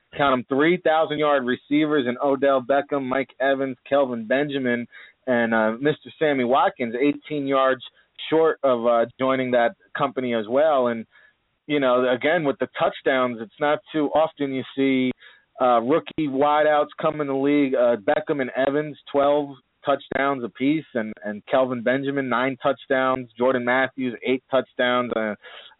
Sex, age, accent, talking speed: male, 30-49, American, 155 wpm